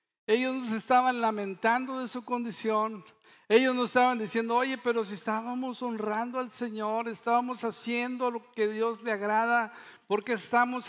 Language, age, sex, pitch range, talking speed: Spanish, 50-69, male, 200-235 Hz, 150 wpm